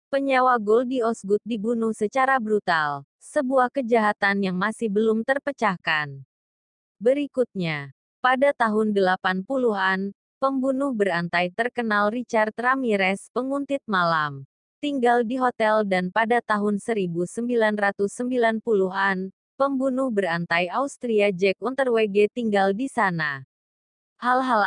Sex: female